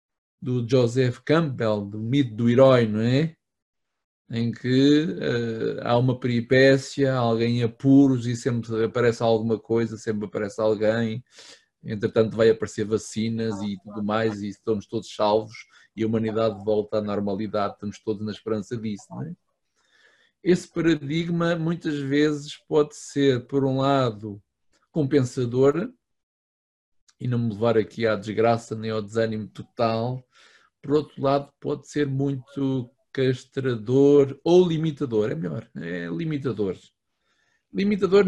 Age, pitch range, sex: 20-39, 115-145 Hz, male